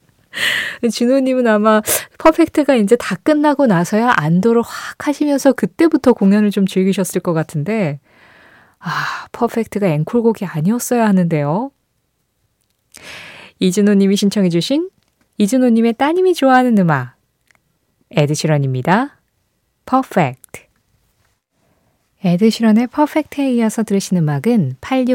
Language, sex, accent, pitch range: Korean, female, native, 160-245 Hz